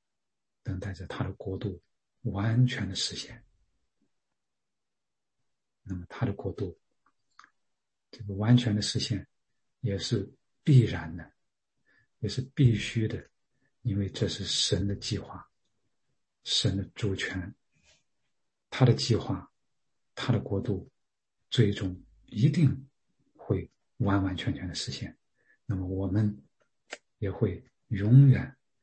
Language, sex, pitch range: English, male, 100-120 Hz